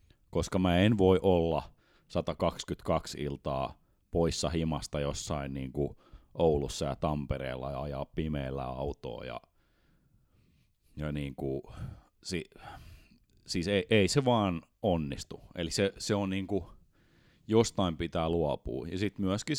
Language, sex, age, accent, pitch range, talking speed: Finnish, male, 30-49, native, 85-110 Hz, 125 wpm